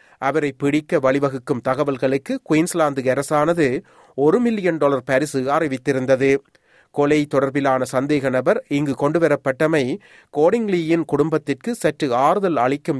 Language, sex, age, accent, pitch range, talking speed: Tamil, male, 30-49, native, 135-170 Hz, 100 wpm